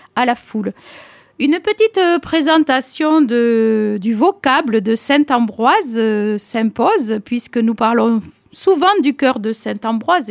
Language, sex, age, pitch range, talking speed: French, female, 50-69, 225-295 Hz, 130 wpm